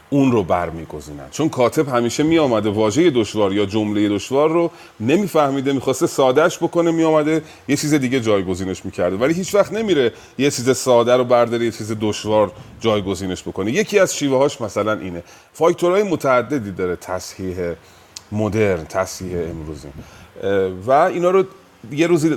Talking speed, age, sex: 150 wpm, 30-49, male